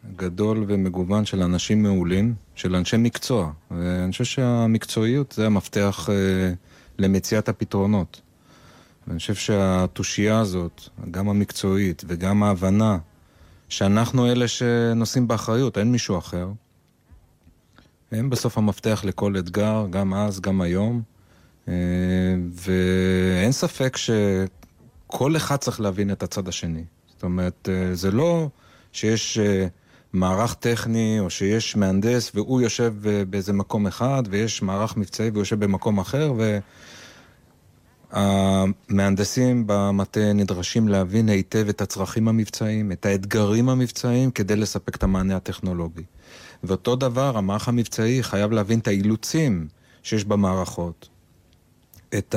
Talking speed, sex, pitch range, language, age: 115 wpm, male, 95-115 Hz, Hebrew, 30-49